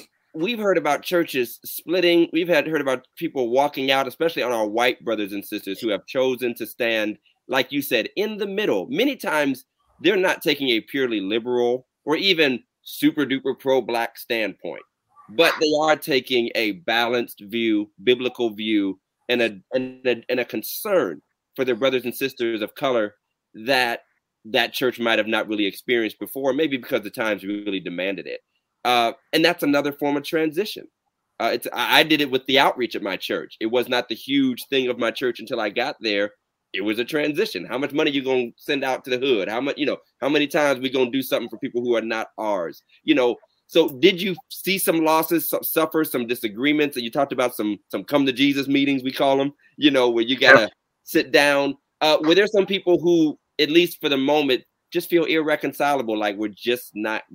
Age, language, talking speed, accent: 30-49, English, 205 wpm, American